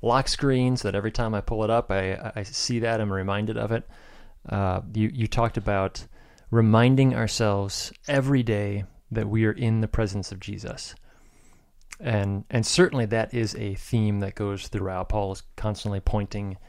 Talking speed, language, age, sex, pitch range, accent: 175 wpm, English, 30-49, male, 100-120 Hz, American